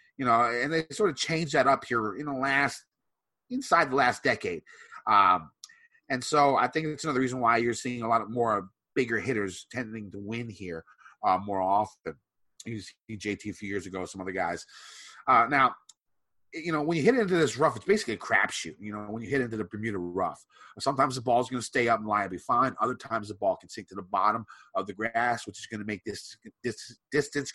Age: 30-49